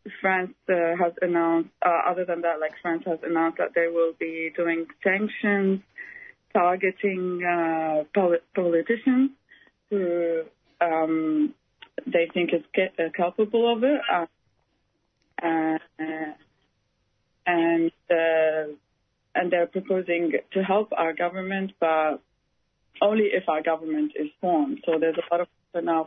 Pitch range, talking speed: 160-185 Hz, 125 wpm